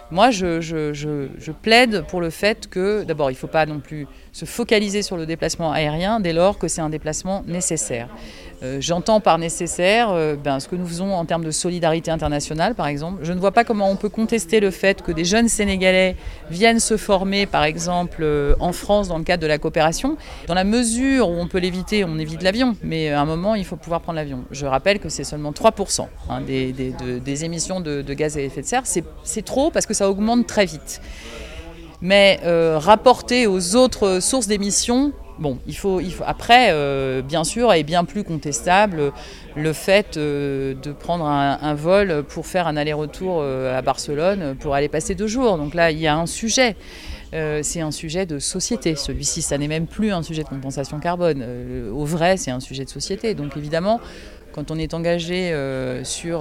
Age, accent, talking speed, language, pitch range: 40-59, French, 210 wpm, French, 145-190 Hz